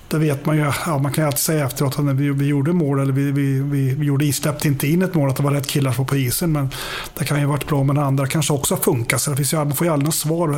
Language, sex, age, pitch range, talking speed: English, male, 30-49, 140-155 Hz, 305 wpm